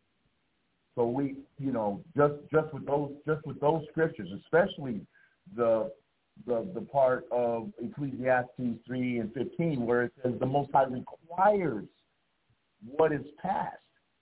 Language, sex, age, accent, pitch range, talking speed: English, male, 50-69, American, 120-160 Hz, 135 wpm